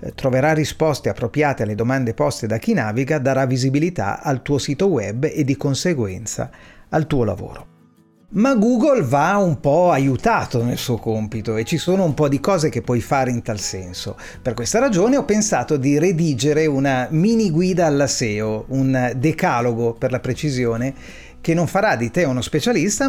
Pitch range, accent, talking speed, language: 115-160 Hz, native, 175 wpm, Italian